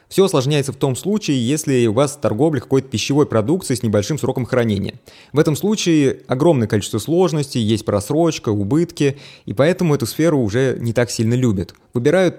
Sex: male